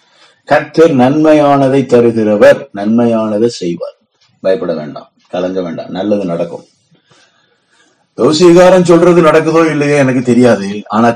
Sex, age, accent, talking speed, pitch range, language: male, 30-49, native, 95 wpm, 115-175 Hz, Tamil